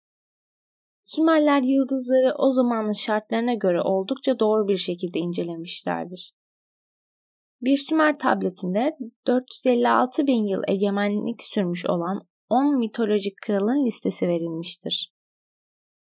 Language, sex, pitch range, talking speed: Turkish, female, 190-255 Hz, 95 wpm